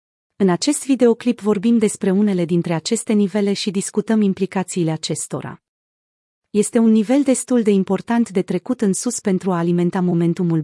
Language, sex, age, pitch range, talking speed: Romanian, female, 30-49, 175-225 Hz, 150 wpm